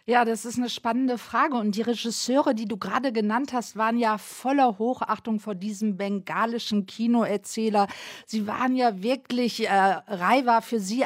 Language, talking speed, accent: German, 170 wpm, German